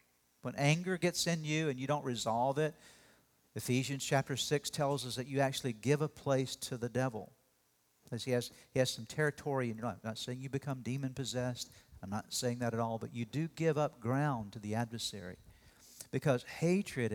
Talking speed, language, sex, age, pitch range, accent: 195 wpm, English, male, 50-69, 115-140 Hz, American